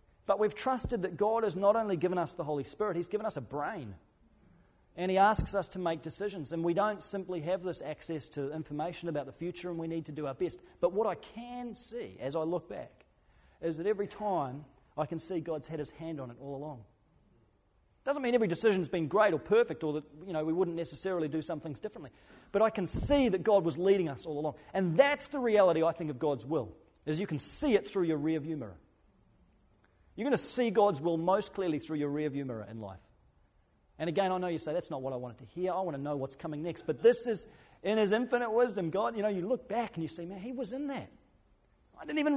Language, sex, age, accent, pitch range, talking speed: English, male, 30-49, Australian, 155-220 Hz, 250 wpm